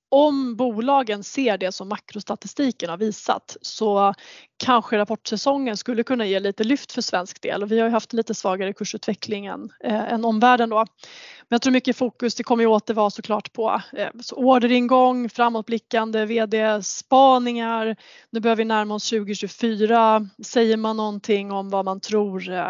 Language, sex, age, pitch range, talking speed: Swedish, female, 20-39, 205-235 Hz, 155 wpm